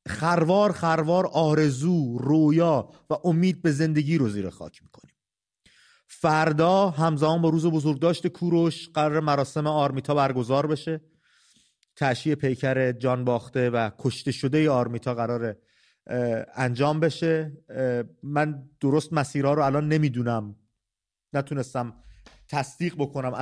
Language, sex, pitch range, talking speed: English, male, 130-165 Hz, 110 wpm